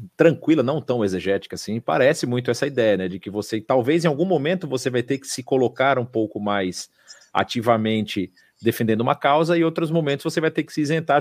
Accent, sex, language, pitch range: Brazilian, male, Portuguese, 125-175 Hz